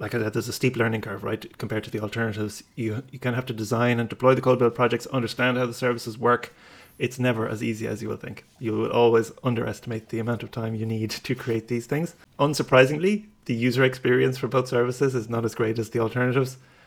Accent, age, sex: Irish, 30-49, male